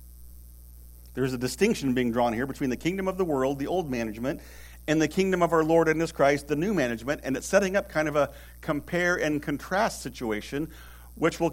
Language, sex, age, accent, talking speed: English, male, 50-69, American, 210 wpm